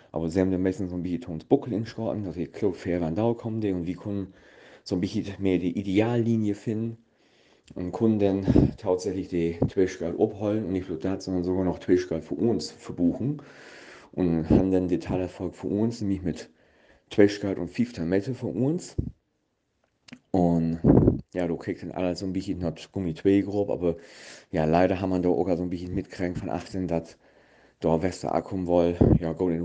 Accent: German